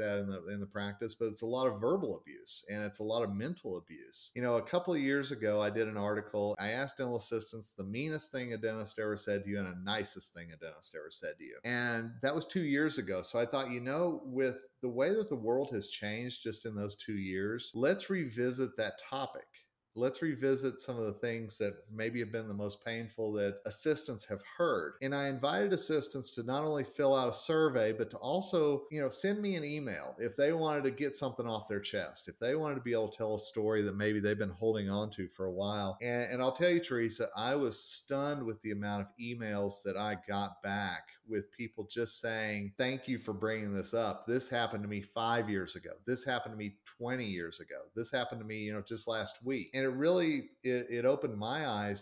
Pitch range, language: 105-135 Hz, English